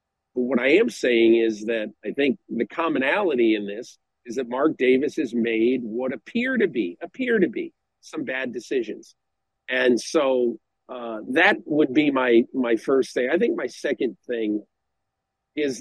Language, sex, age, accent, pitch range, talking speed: English, male, 50-69, American, 115-175 Hz, 170 wpm